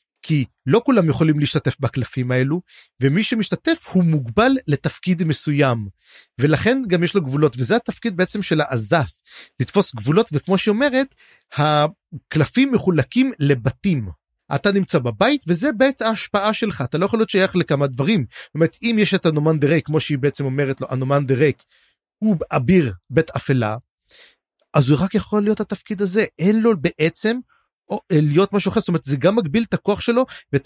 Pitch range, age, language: 145-210 Hz, 30-49, Hebrew